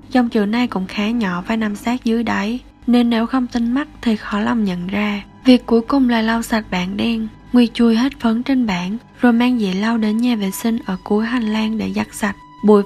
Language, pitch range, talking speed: Vietnamese, 205-240 Hz, 240 wpm